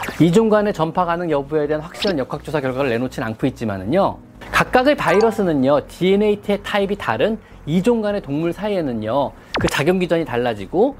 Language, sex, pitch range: Korean, male, 140-215 Hz